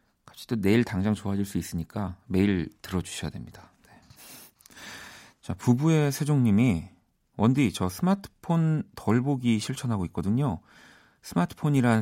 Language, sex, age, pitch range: Korean, male, 40-59, 90-120 Hz